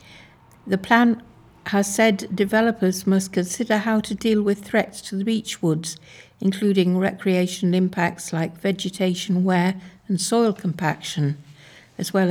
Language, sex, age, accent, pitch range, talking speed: English, female, 60-79, British, 165-200 Hz, 130 wpm